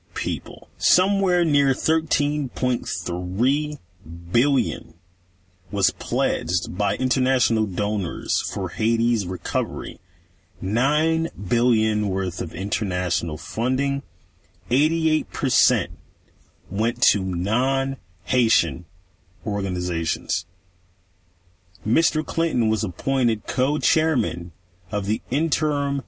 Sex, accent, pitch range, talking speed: male, American, 90-125 Hz, 75 wpm